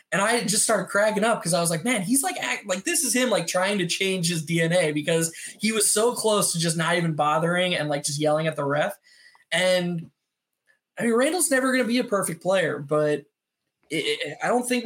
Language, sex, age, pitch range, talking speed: English, male, 20-39, 150-200 Hz, 230 wpm